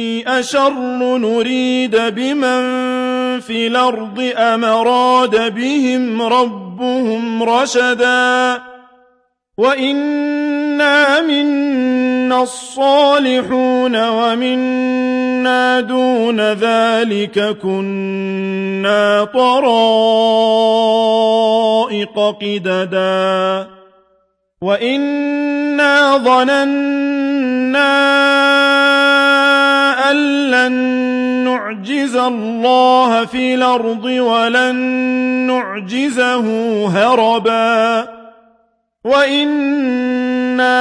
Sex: male